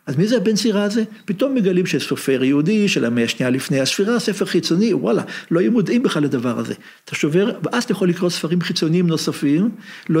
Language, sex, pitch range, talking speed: Hebrew, male, 140-185 Hz, 200 wpm